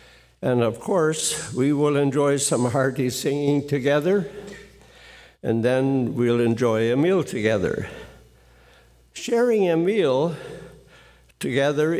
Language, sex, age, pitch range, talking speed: English, male, 60-79, 115-160 Hz, 105 wpm